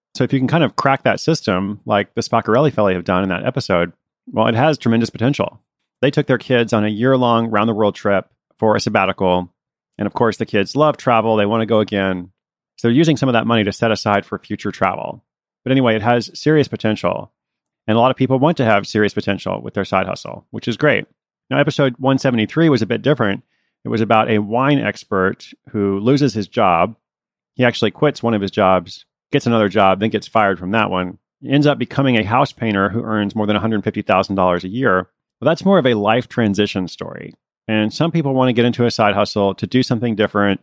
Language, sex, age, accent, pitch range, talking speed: English, male, 30-49, American, 100-130 Hz, 225 wpm